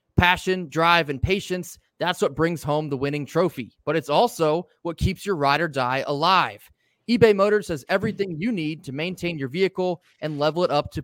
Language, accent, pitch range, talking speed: English, American, 140-185 Hz, 195 wpm